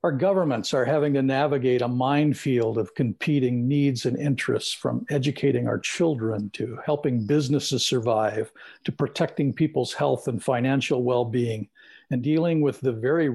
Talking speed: 150 wpm